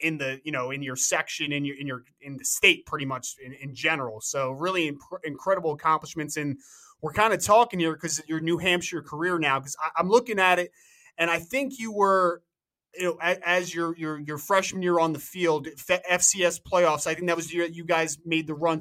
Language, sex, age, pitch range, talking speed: English, male, 20-39, 160-185 Hz, 220 wpm